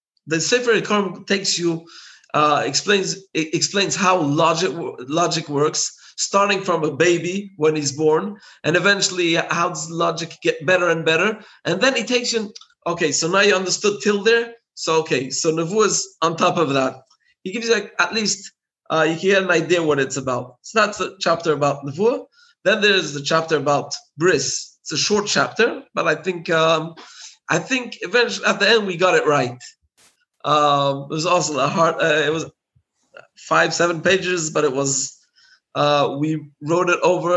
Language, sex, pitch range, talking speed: English, male, 150-195 Hz, 185 wpm